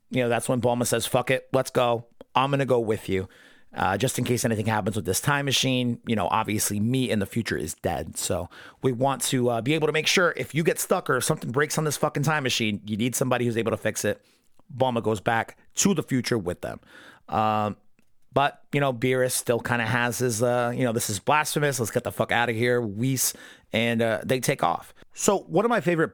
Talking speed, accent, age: 245 wpm, American, 30-49